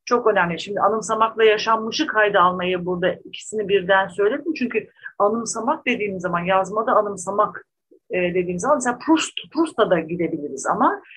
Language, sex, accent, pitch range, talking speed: Turkish, female, native, 180-270 Hz, 130 wpm